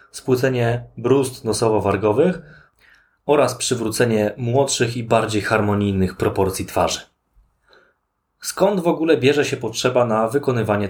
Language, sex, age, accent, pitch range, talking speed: Polish, male, 20-39, native, 105-130 Hz, 105 wpm